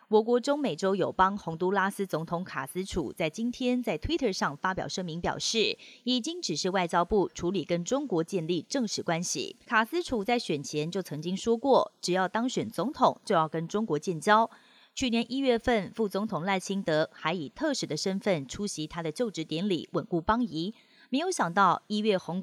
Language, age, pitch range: Chinese, 30-49, 170-235 Hz